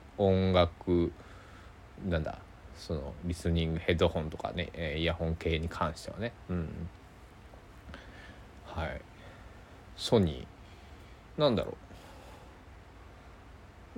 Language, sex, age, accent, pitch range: Japanese, male, 20-39, native, 85-115 Hz